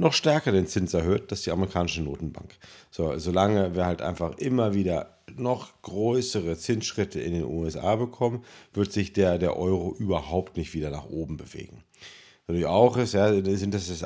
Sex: male